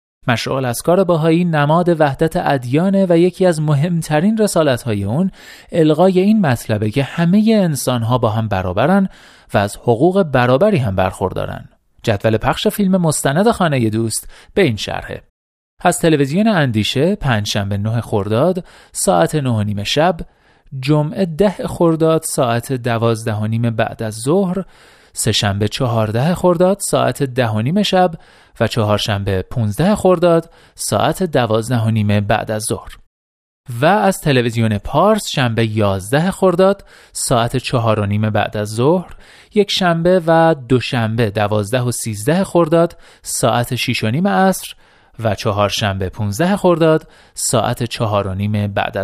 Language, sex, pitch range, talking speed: Persian, male, 110-175 Hz, 140 wpm